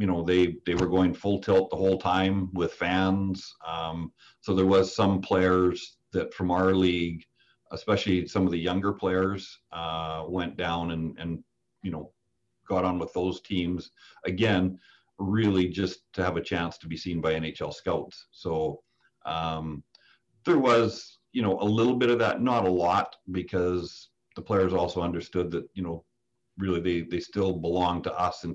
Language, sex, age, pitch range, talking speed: English, male, 40-59, 85-95 Hz, 175 wpm